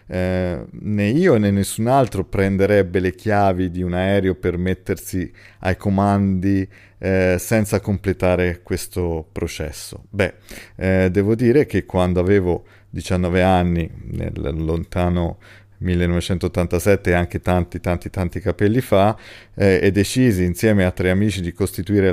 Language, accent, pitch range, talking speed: Italian, native, 90-105 Hz, 130 wpm